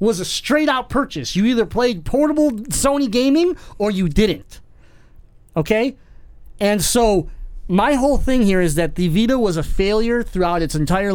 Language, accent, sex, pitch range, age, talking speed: English, American, male, 165-230 Hz, 30-49, 165 wpm